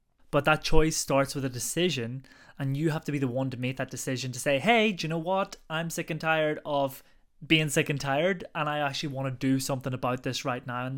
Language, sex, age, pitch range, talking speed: English, male, 20-39, 135-175 Hz, 250 wpm